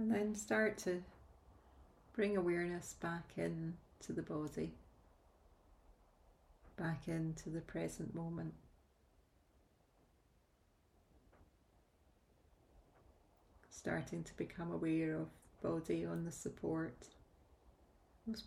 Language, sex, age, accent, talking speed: English, female, 30-49, British, 80 wpm